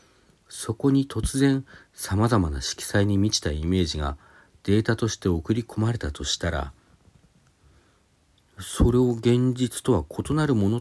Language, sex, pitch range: Japanese, male, 85-120 Hz